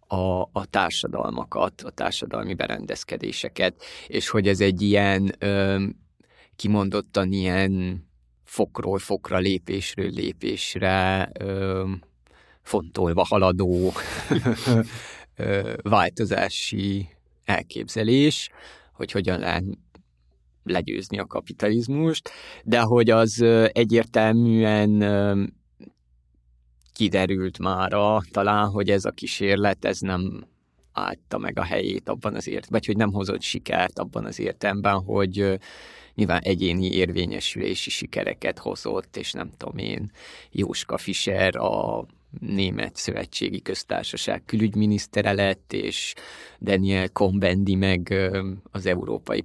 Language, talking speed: Hungarian, 90 wpm